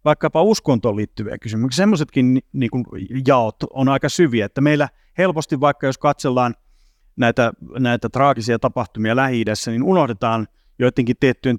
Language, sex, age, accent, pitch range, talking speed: Finnish, male, 30-49, native, 110-140 Hz, 135 wpm